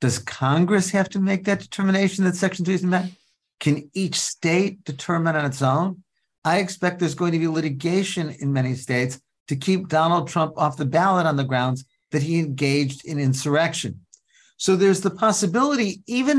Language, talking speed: English, 180 wpm